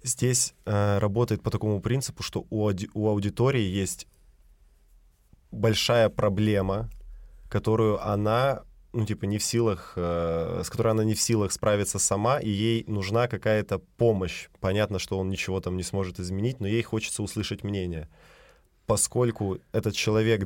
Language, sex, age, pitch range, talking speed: Russian, male, 20-39, 95-110 Hz, 145 wpm